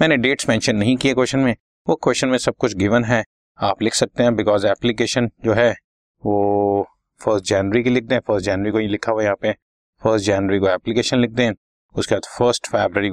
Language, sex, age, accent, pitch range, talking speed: Hindi, male, 30-49, native, 95-115 Hz, 230 wpm